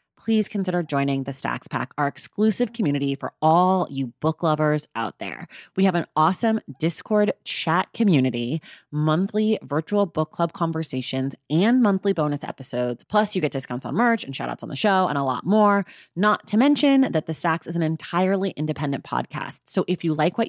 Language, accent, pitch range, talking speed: English, American, 140-190 Hz, 185 wpm